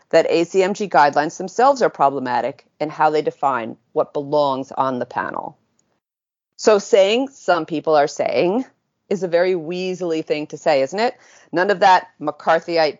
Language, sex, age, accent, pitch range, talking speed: English, female, 40-59, American, 150-210 Hz, 155 wpm